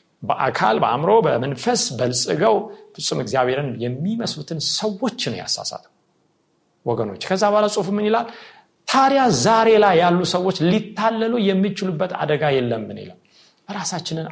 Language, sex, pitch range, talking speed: Amharic, male, 135-195 Hz, 115 wpm